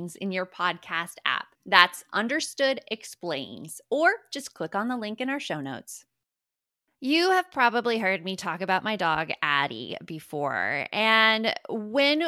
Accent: American